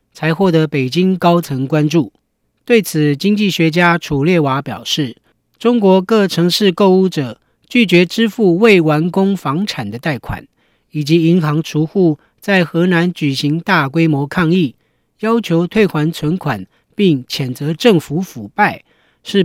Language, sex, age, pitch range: Chinese, male, 40-59, 150-195 Hz